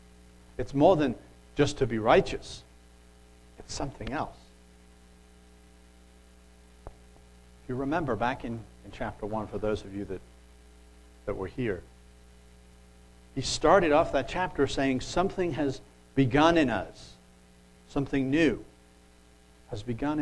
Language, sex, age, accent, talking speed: English, male, 60-79, American, 120 wpm